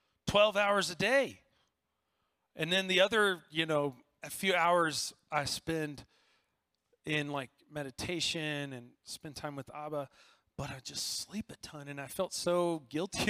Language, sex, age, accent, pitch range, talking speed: English, male, 30-49, American, 130-170 Hz, 155 wpm